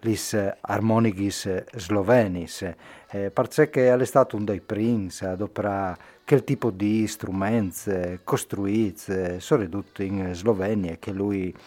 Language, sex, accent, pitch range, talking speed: Italian, male, native, 95-115 Hz, 110 wpm